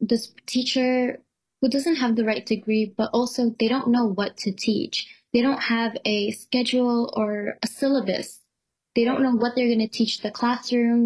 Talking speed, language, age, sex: 180 wpm, English, 10-29, female